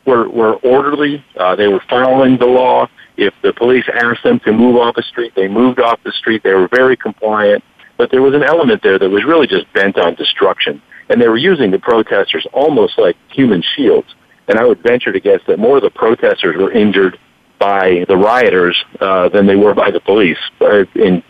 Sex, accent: male, American